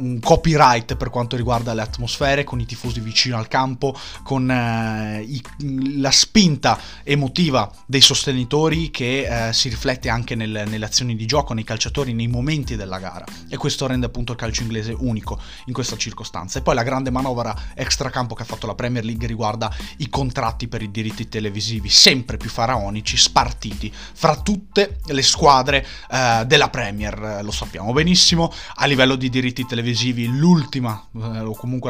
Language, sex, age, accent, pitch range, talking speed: Italian, male, 20-39, native, 110-135 Hz, 165 wpm